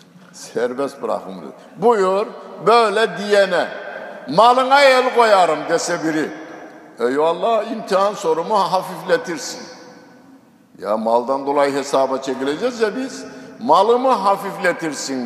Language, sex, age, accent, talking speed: Turkish, male, 60-79, native, 90 wpm